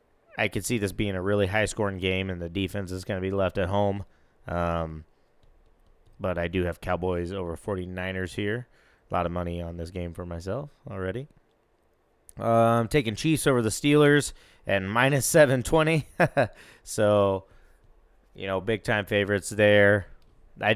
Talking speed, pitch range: 155 wpm, 90-105 Hz